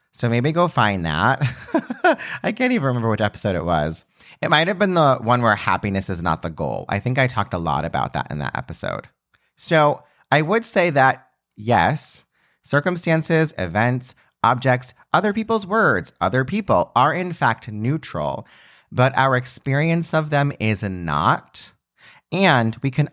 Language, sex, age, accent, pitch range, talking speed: English, male, 30-49, American, 110-160 Hz, 165 wpm